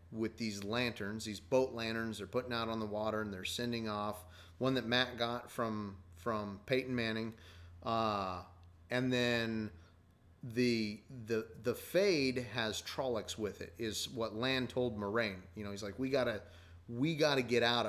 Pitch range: 95-125 Hz